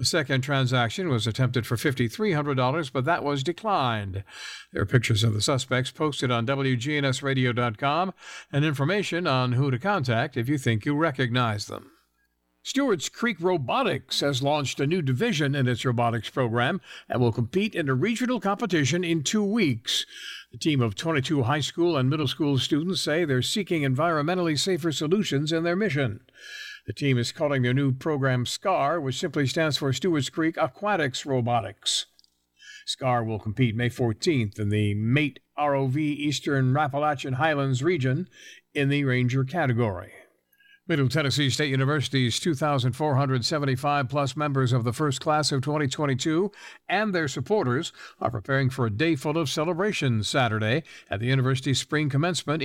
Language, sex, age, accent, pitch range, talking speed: English, male, 60-79, American, 125-160 Hz, 155 wpm